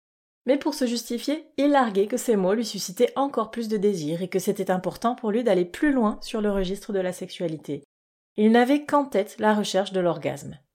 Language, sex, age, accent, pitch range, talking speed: French, female, 30-49, French, 180-245 Hz, 210 wpm